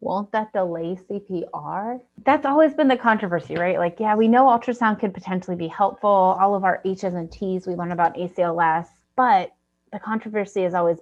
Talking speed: 185 wpm